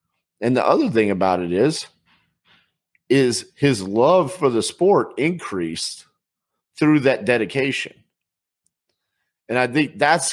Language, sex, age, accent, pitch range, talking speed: English, male, 40-59, American, 115-155 Hz, 120 wpm